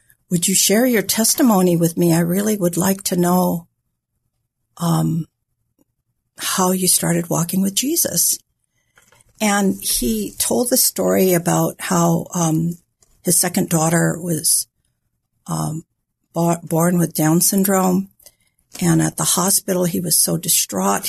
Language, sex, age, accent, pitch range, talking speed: English, female, 60-79, American, 150-185 Hz, 130 wpm